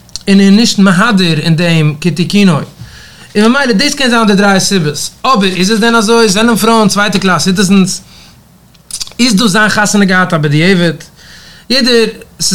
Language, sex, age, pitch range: English, male, 30-49, 145-205 Hz